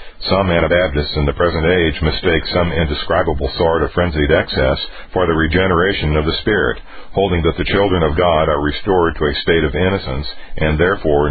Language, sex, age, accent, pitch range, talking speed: English, male, 50-69, American, 75-90 Hz, 180 wpm